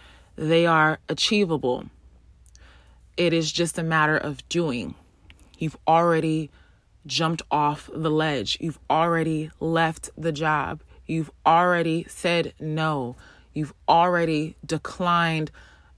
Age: 20-39